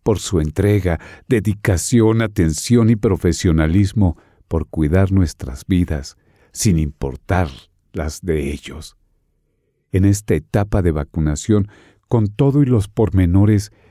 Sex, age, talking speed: male, 50-69, 110 wpm